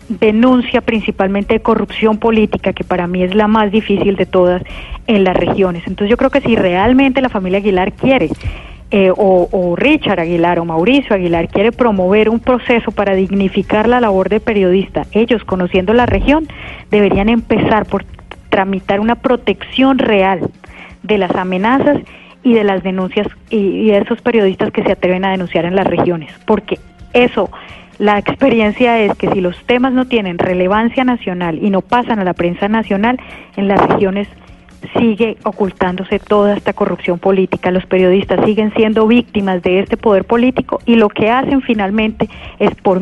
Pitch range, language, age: 185-225 Hz, Spanish, 30-49